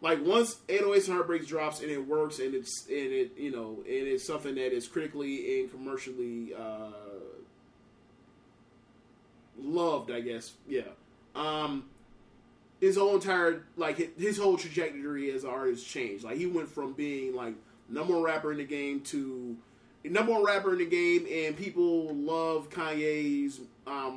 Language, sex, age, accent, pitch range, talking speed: English, male, 30-49, American, 135-190 Hz, 160 wpm